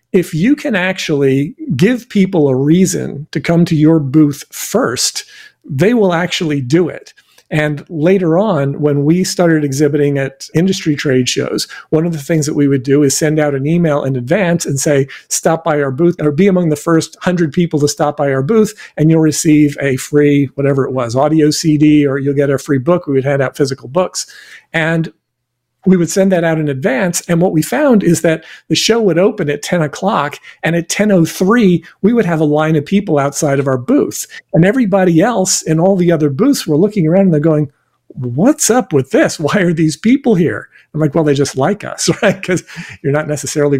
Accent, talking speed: American, 210 wpm